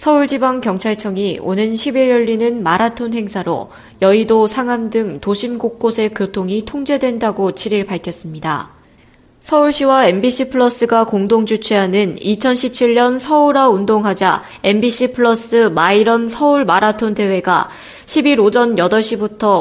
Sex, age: female, 20-39